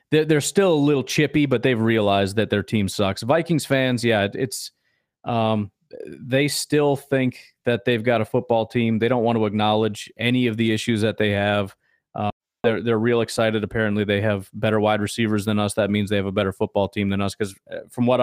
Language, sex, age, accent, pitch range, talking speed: English, male, 30-49, American, 105-125 Hz, 210 wpm